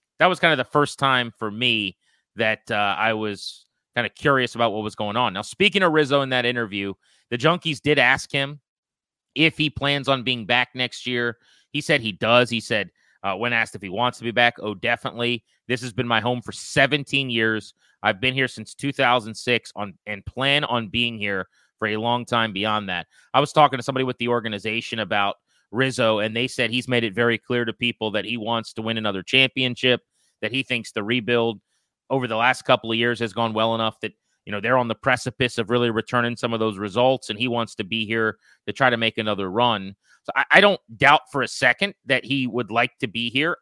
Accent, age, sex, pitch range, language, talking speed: American, 30-49, male, 115-145 Hz, English, 225 wpm